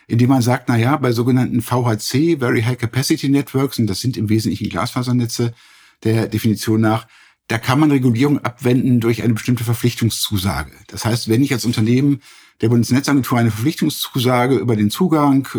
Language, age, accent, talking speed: German, 50-69, German, 165 wpm